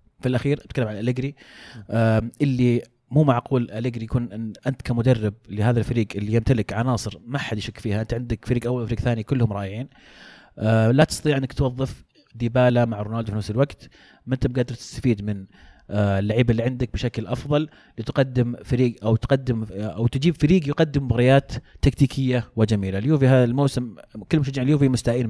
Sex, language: male, Arabic